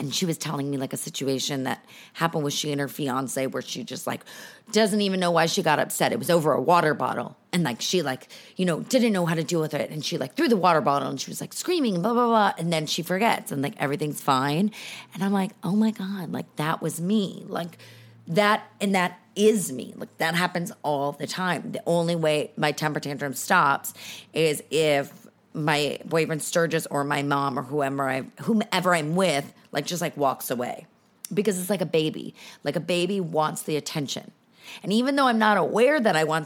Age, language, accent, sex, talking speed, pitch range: 30-49, English, American, female, 225 wpm, 150-205 Hz